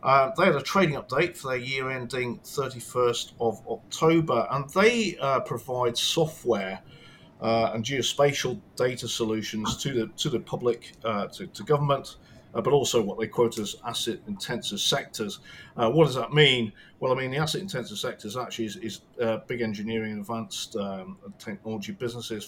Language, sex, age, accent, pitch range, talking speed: English, male, 40-59, British, 115-150 Hz, 175 wpm